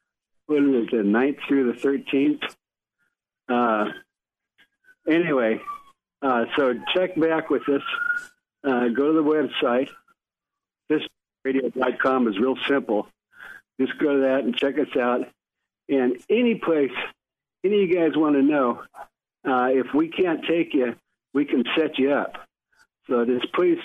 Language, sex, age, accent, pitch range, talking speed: English, male, 60-79, American, 120-145 Hz, 140 wpm